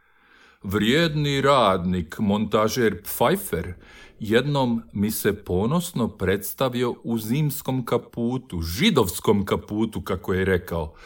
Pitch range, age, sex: 85-115 Hz, 50-69, male